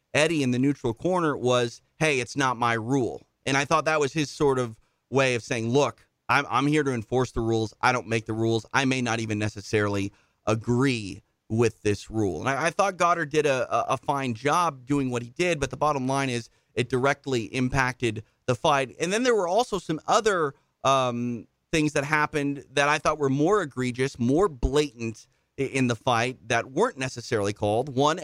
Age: 30-49